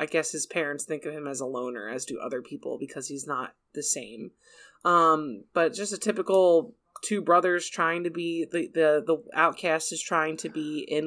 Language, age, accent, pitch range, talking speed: English, 20-39, American, 150-175 Hz, 205 wpm